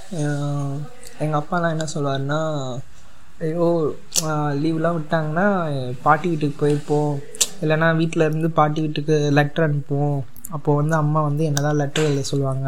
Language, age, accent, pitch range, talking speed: Tamil, 20-39, native, 140-170 Hz, 120 wpm